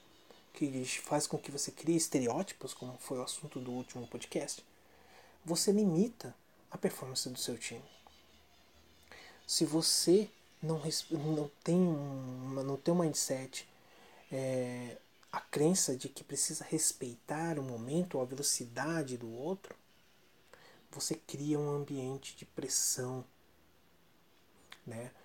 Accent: Brazilian